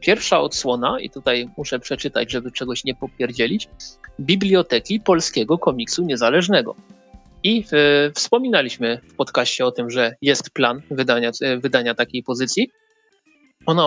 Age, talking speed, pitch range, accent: 30-49, 125 wpm, 125-160 Hz, native